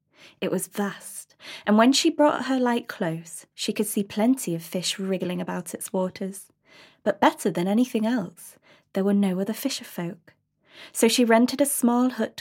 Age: 20-39